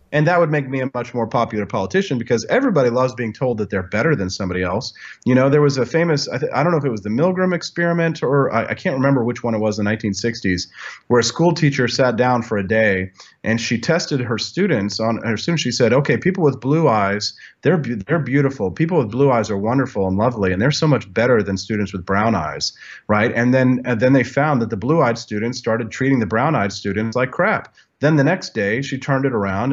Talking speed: 250 wpm